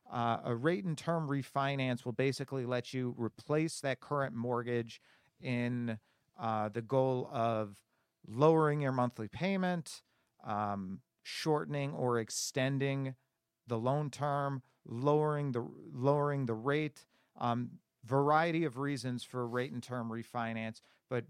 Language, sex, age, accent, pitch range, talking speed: English, male, 40-59, American, 120-145 Hz, 125 wpm